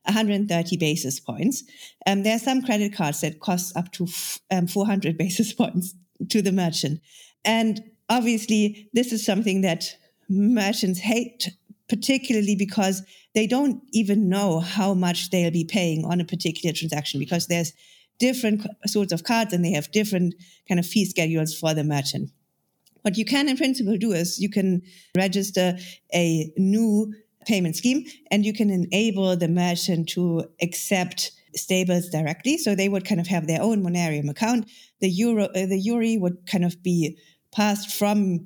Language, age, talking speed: English, 50-69, 170 wpm